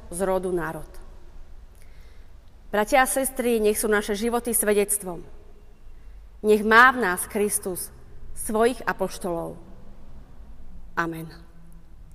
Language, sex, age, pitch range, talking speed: Slovak, female, 30-49, 175-225 Hz, 95 wpm